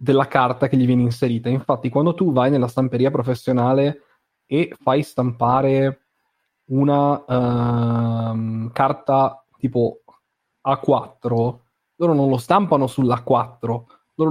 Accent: native